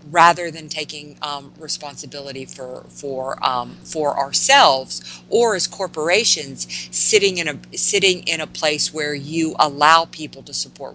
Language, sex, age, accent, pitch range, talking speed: English, female, 50-69, American, 135-170 Hz, 145 wpm